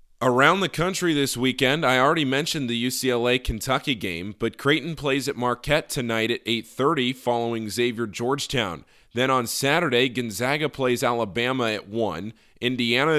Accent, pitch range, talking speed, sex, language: American, 115-150 Hz, 140 wpm, male, English